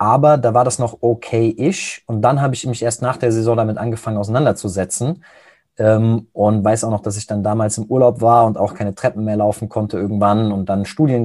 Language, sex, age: German, male, 20-39